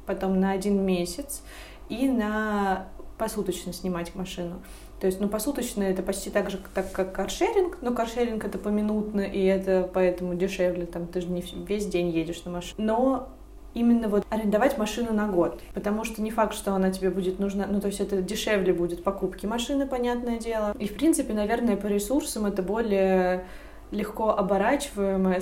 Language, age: Russian, 20-39